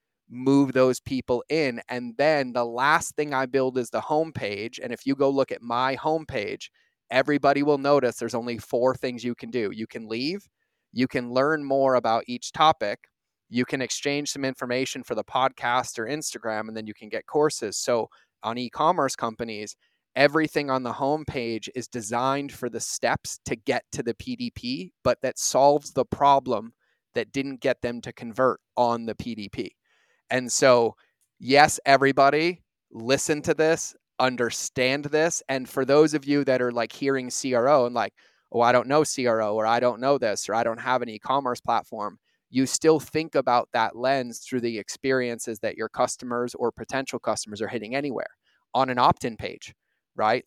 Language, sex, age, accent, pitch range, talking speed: English, male, 30-49, American, 120-140 Hz, 180 wpm